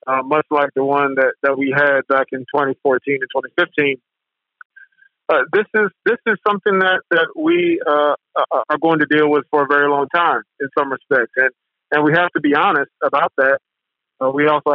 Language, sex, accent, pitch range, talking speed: English, male, American, 140-160 Hz, 200 wpm